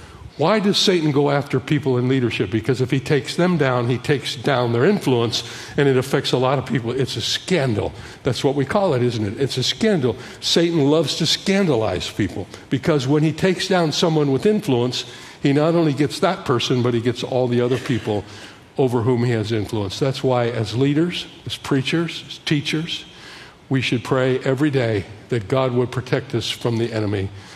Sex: male